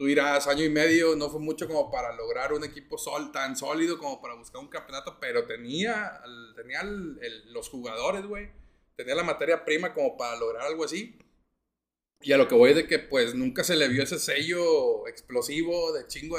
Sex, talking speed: male, 205 wpm